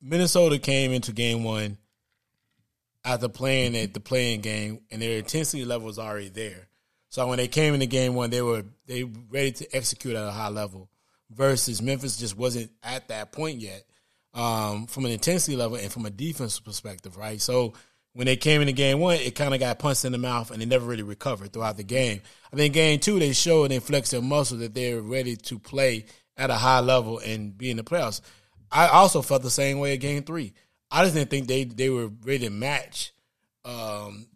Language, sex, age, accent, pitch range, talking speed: English, male, 20-39, American, 115-145 Hz, 215 wpm